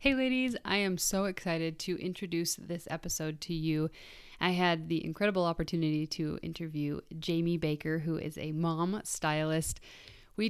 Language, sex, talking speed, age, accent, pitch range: English, female, 155 wpm, 20-39, American, 160-190 Hz